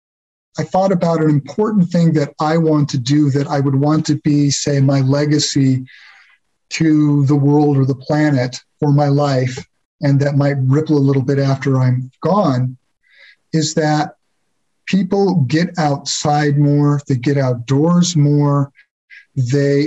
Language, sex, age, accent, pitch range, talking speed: English, male, 50-69, American, 140-160 Hz, 150 wpm